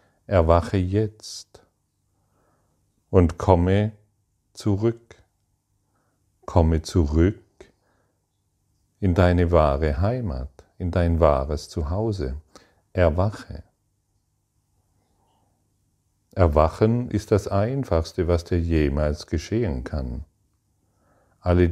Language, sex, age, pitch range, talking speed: German, male, 40-59, 80-100 Hz, 70 wpm